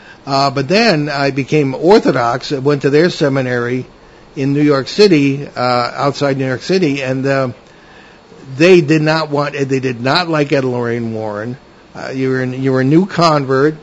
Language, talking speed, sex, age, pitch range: English, 180 wpm, male, 60-79, 130-155 Hz